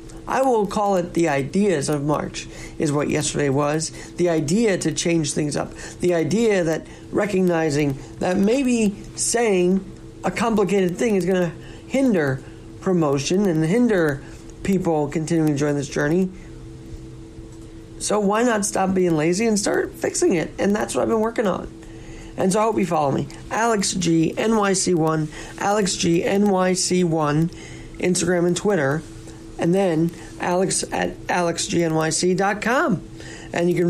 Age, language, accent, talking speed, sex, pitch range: 40-59, English, American, 150 wpm, male, 155-195 Hz